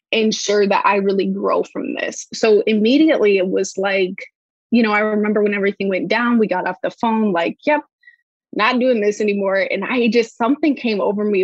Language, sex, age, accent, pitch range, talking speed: English, female, 20-39, American, 195-230 Hz, 200 wpm